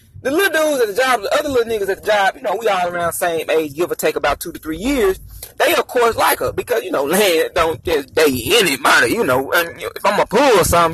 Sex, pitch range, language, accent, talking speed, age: male, 165-235 Hz, English, American, 280 wpm, 30-49